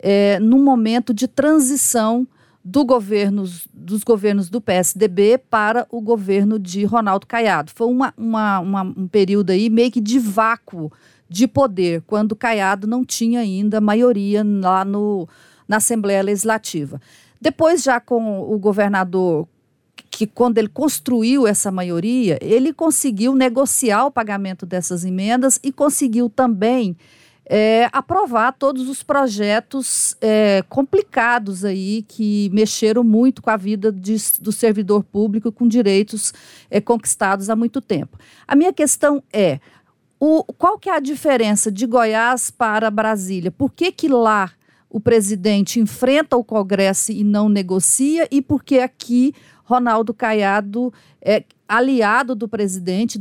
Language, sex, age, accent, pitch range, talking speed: Portuguese, female, 50-69, Brazilian, 200-250 Hz, 130 wpm